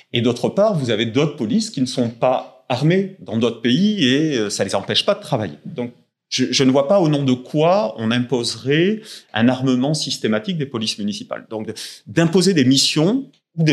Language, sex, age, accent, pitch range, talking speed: French, male, 30-49, French, 120-180 Hz, 195 wpm